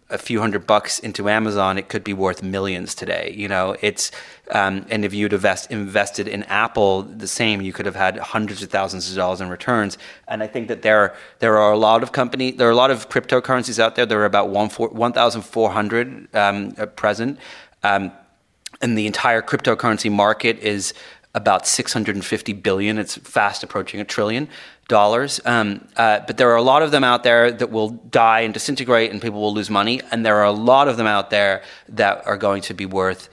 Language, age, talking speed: English, 30-49, 215 wpm